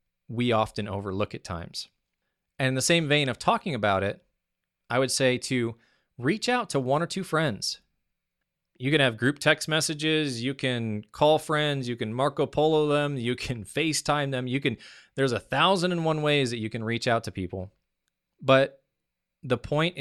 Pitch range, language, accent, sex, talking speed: 110-145 Hz, English, American, male, 185 wpm